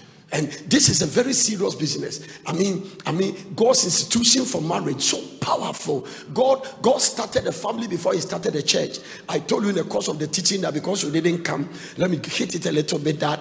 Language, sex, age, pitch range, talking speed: English, male, 50-69, 165-230 Hz, 220 wpm